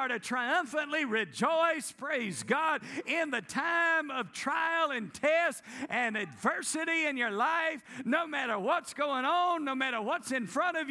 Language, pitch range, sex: English, 250-320 Hz, male